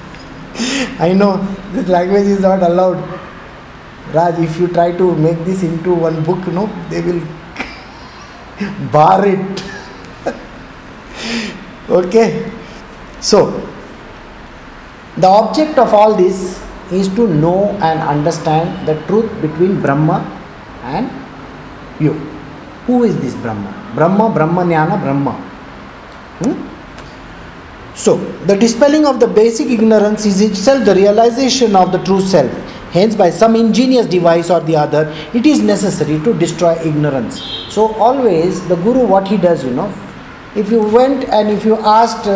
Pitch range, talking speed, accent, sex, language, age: 165-220 Hz, 135 wpm, Indian, male, English, 50-69